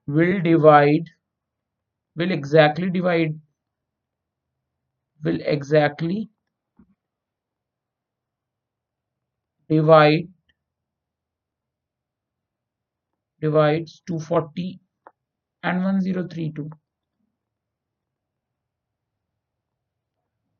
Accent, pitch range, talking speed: native, 125-185 Hz, 40 wpm